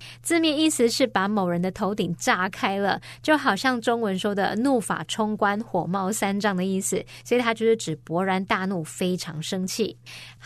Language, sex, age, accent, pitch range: Chinese, female, 20-39, American, 185-240 Hz